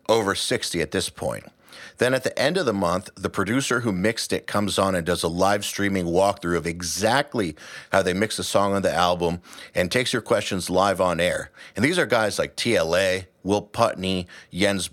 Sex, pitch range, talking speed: male, 90-100 Hz, 205 wpm